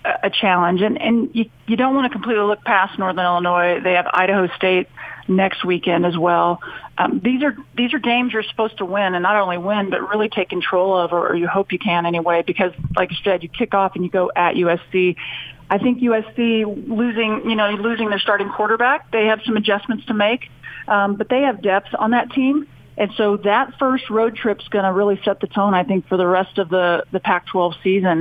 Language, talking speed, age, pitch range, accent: English, 225 wpm, 40-59, 185-225 Hz, American